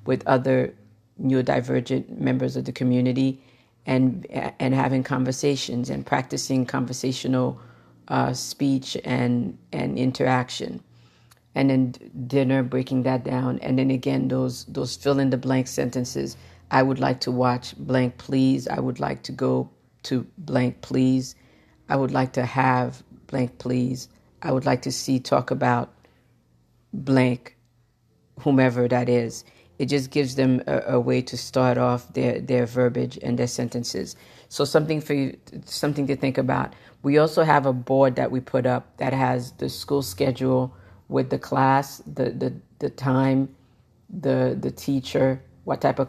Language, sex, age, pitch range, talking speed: English, female, 50-69, 125-130 Hz, 155 wpm